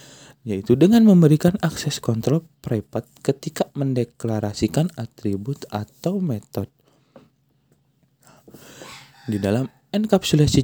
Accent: native